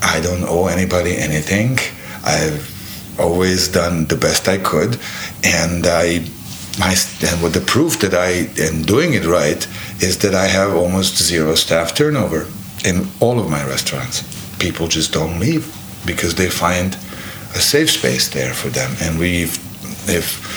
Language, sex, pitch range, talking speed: English, male, 85-105 Hz, 160 wpm